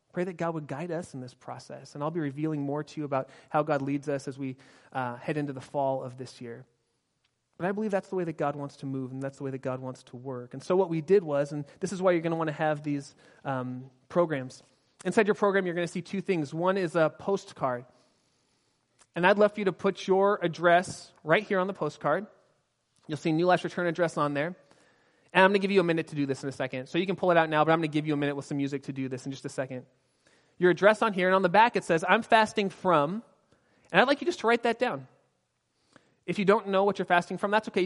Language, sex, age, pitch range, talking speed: English, male, 30-49, 140-190 Hz, 280 wpm